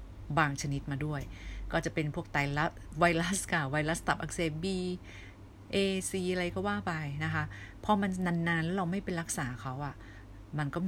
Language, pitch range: Thai, 125-175 Hz